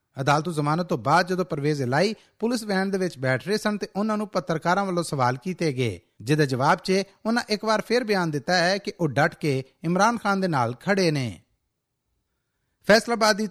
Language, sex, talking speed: Punjabi, male, 165 wpm